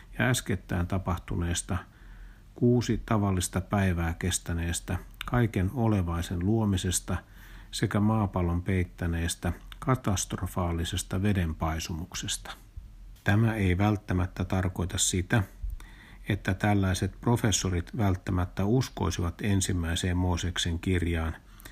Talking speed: 75 wpm